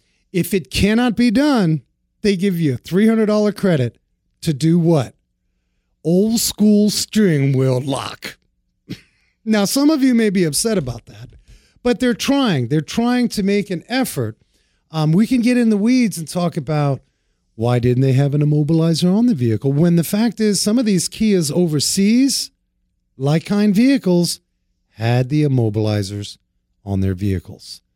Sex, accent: male, American